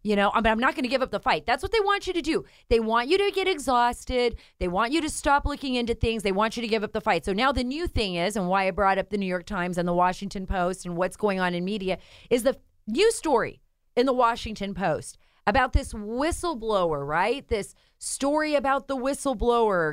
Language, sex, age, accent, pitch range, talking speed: English, female, 30-49, American, 195-270 Hz, 245 wpm